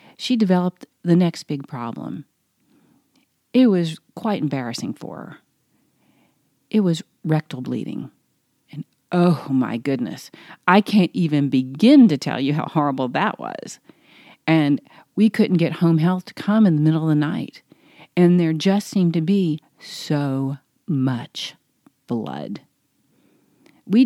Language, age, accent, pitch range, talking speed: English, 40-59, American, 155-215 Hz, 135 wpm